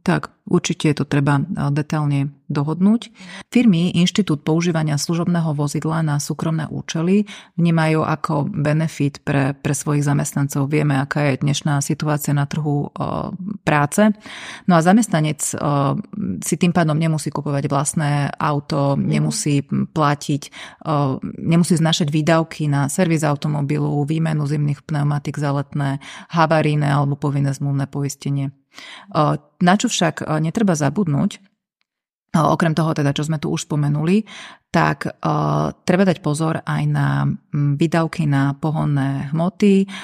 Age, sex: 30-49, female